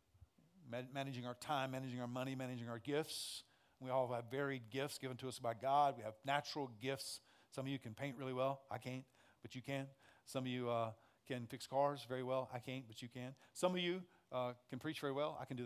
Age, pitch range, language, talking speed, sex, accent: 40-59, 120-145 Hz, English, 230 wpm, male, American